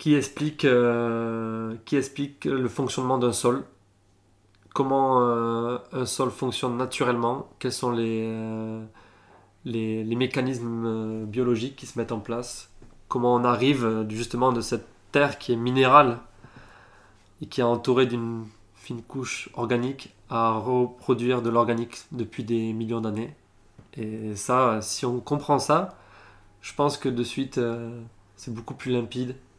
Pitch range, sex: 110-125 Hz, male